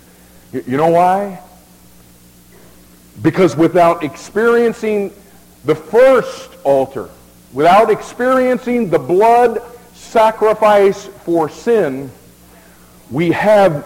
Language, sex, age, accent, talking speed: English, male, 50-69, American, 80 wpm